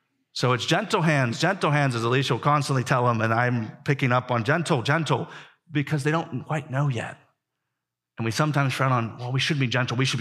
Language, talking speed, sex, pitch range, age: English, 215 wpm, male, 120-145 Hz, 30-49